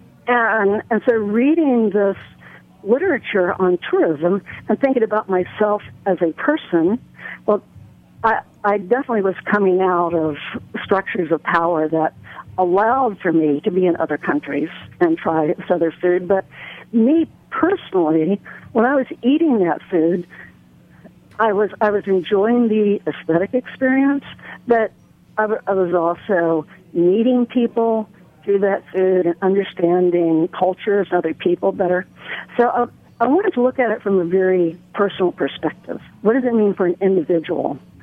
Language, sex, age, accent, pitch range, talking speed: English, female, 60-79, American, 175-230 Hz, 145 wpm